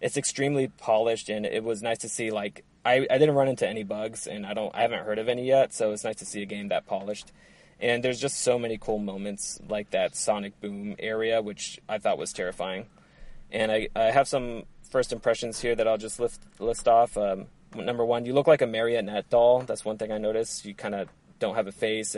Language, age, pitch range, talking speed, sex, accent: English, 20-39, 105-125 Hz, 235 wpm, male, American